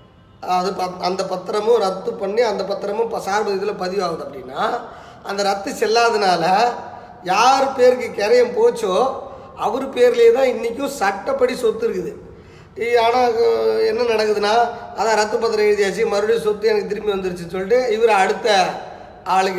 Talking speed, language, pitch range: 125 wpm, Tamil, 185-245 Hz